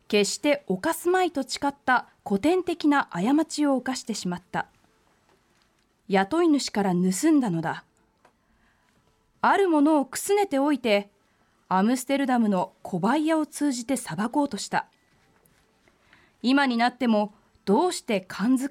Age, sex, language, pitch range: 20-39, female, Japanese, 200-280 Hz